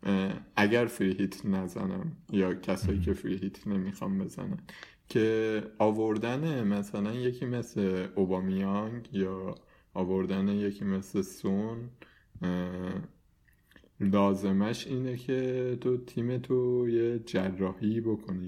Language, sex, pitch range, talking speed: Persian, male, 95-120 Hz, 90 wpm